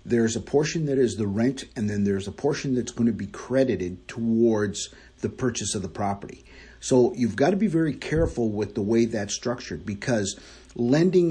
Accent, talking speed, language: American, 195 wpm, English